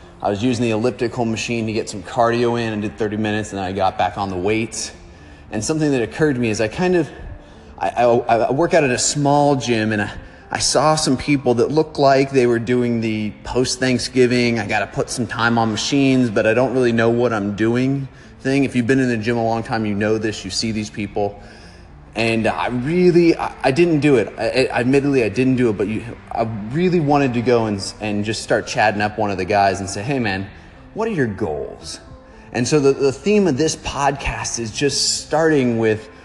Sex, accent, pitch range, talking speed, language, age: male, American, 105-130 Hz, 235 wpm, English, 30-49